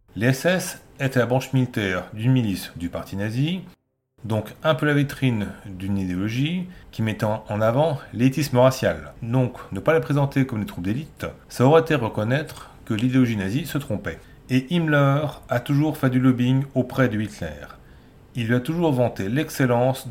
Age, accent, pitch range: 40-59, French, 110-145 Hz